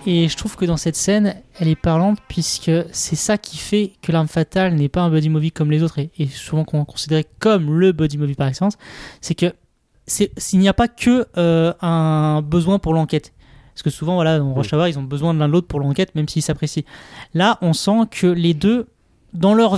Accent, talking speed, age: French, 230 wpm, 20-39